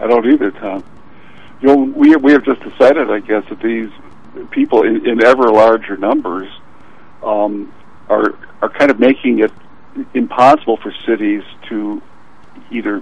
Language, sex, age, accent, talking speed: English, male, 60-79, American, 150 wpm